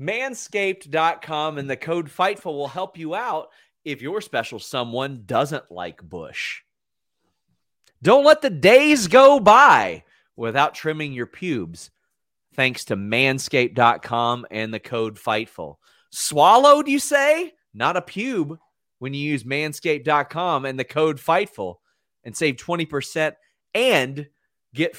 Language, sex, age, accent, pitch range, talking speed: English, male, 30-49, American, 120-170 Hz, 125 wpm